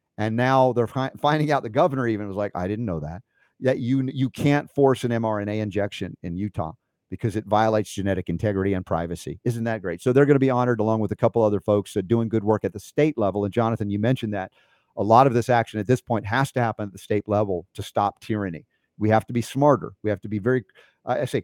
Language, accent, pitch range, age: English, American, 105-125 Hz, 50-69